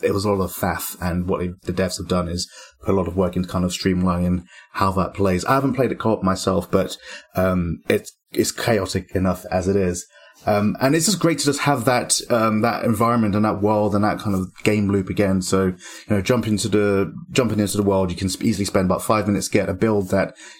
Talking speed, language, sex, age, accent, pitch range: 240 wpm, English, male, 30-49, British, 95-110 Hz